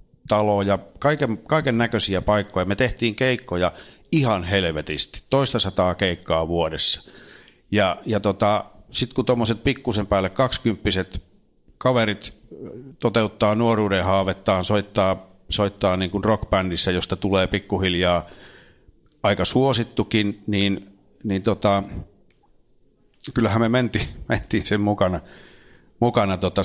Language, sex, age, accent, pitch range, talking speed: Finnish, male, 50-69, native, 95-115 Hz, 110 wpm